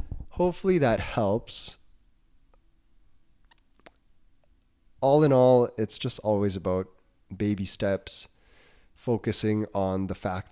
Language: English